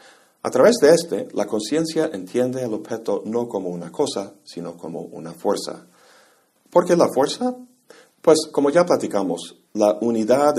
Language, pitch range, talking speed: Spanish, 90-120 Hz, 155 wpm